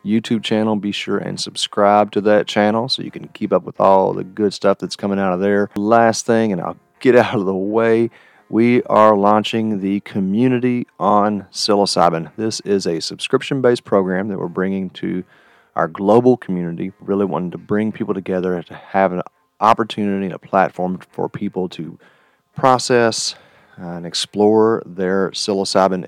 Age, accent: 40-59, American